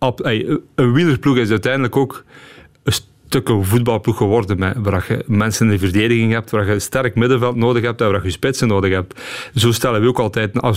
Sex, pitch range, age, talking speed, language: male, 105-135 Hz, 40-59, 205 wpm, Dutch